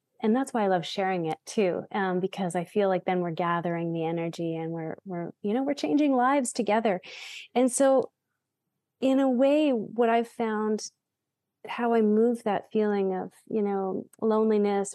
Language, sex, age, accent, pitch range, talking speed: English, female, 30-49, American, 180-215 Hz, 175 wpm